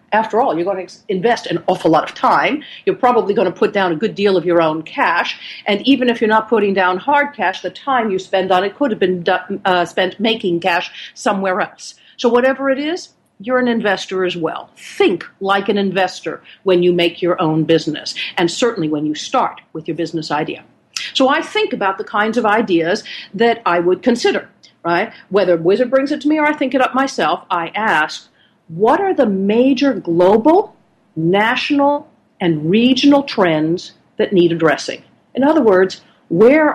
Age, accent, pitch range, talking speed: 50-69, American, 180-240 Hz, 195 wpm